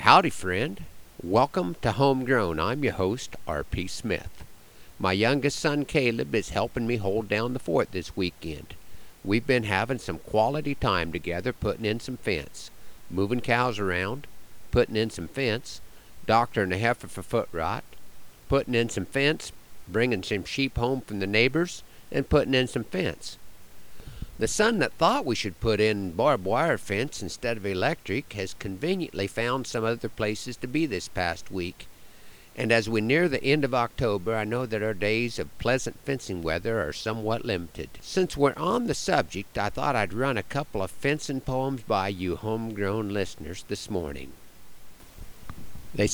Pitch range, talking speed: 95-130 Hz, 170 wpm